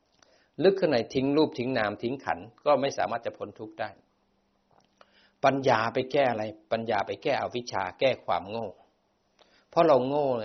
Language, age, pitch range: Thai, 60-79, 100-125 Hz